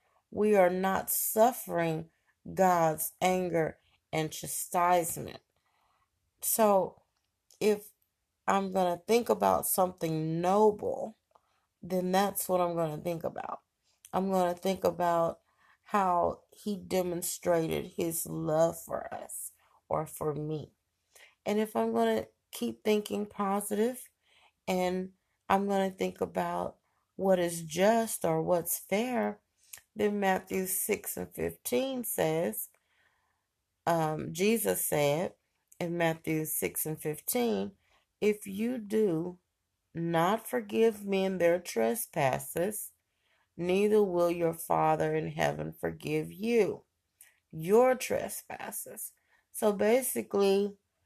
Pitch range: 160-205 Hz